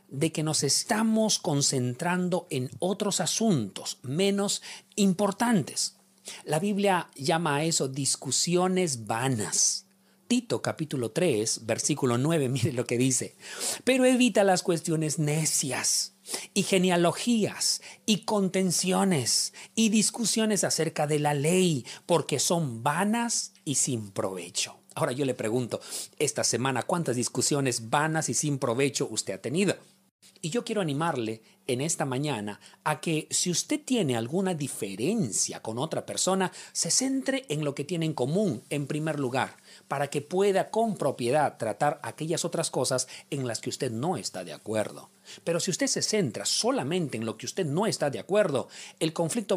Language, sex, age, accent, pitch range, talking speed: Spanish, male, 40-59, Mexican, 135-195 Hz, 150 wpm